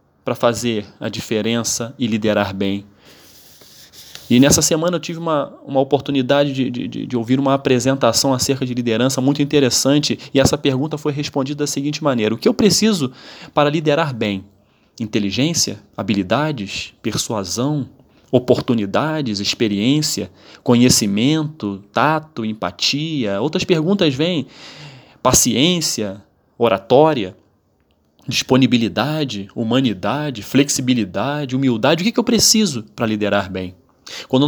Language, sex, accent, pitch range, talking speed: Portuguese, male, Brazilian, 115-155 Hz, 115 wpm